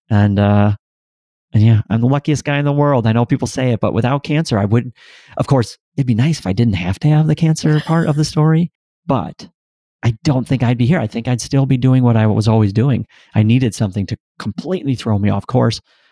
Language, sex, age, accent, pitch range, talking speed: English, male, 40-59, American, 105-135 Hz, 240 wpm